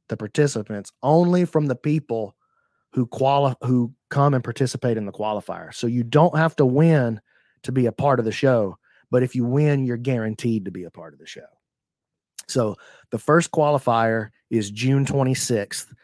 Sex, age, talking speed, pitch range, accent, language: male, 30-49, 180 wpm, 110-130 Hz, American, English